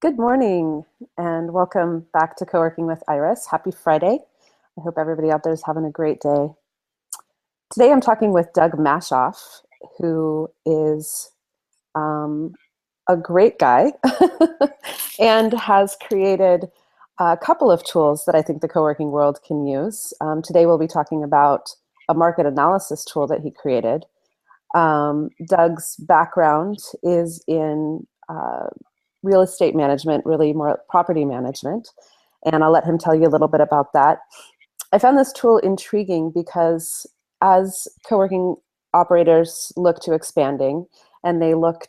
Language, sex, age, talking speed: English, female, 30-49, 145 wpm